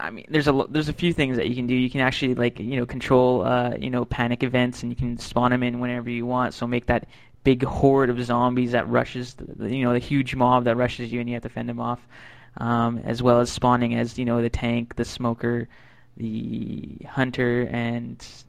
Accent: American